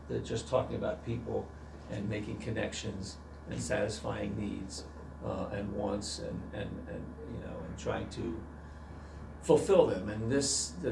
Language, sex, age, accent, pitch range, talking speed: English, male, 50-69, American, 80-115 Hz, 145 wpm